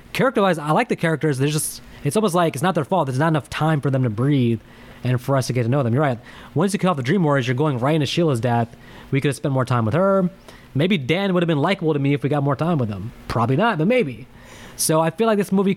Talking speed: 295 wpm